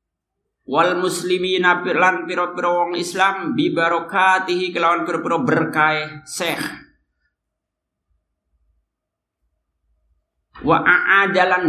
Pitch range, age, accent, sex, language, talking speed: 160-185 Hz, 50-69, native, male, Indonesian, 65 wpm